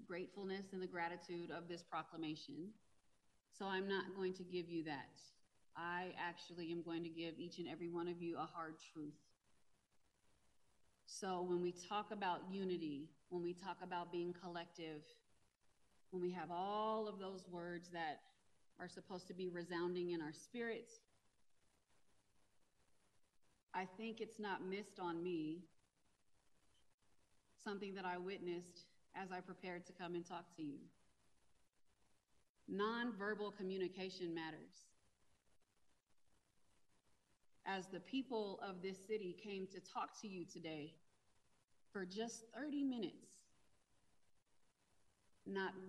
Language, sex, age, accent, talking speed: English, female, 30-49, American, 130 wpm